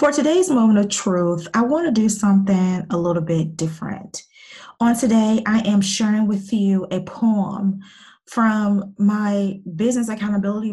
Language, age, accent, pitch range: English, 20-39, American, 185-220 Hz